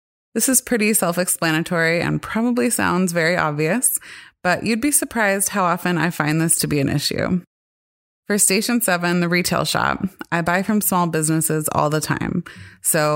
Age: 20-39